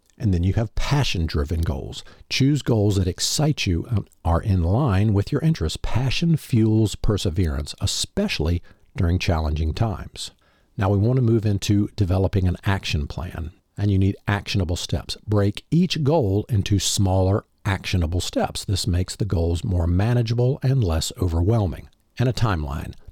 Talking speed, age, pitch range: 155 wpm, 50-69, 90-115 Hz